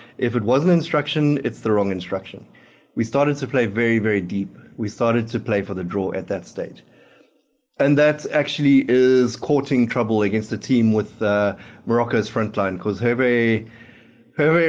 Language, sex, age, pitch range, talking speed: English, male, 30-49, 105-145 Hz, 175 wpm